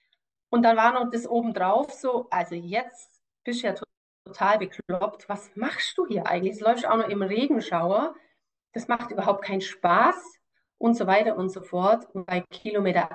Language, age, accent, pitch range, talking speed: German, 30-49, German, 190-240 Hz, 185 wpm